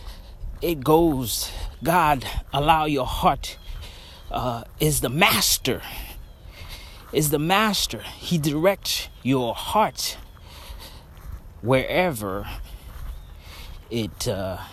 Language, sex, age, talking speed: English, male, 30-49, 75 wpm